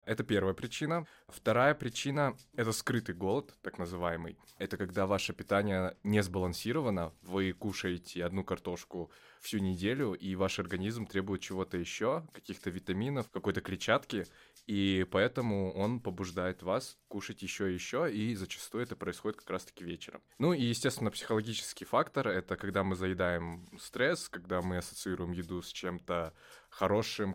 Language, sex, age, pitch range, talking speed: Russian, male, 20-39, 90-105 Hz, 145 wpm